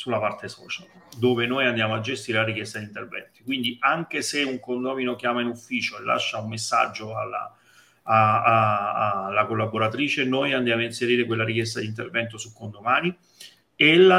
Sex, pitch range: male, 115-135 Hz